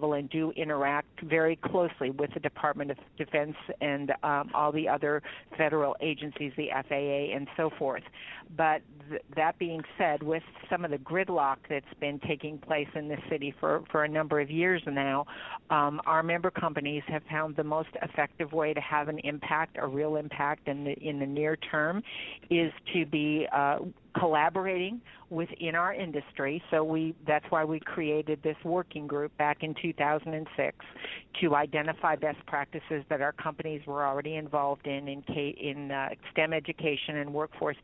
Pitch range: 145-160 Hz